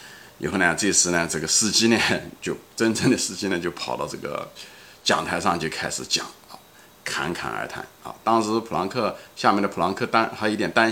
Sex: male